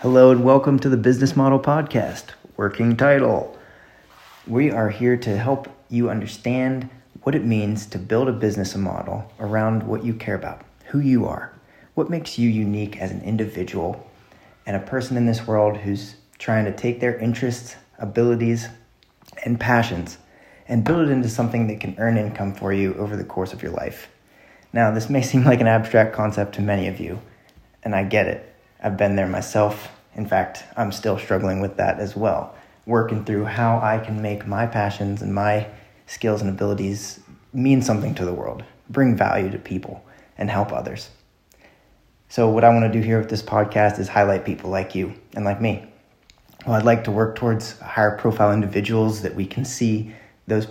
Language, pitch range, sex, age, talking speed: English, 100-120 Hz, male, 30-49, 185 wpm